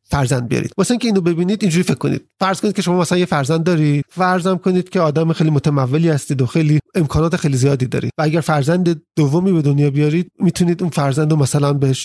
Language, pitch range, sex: Persian, 150-190 Hz, male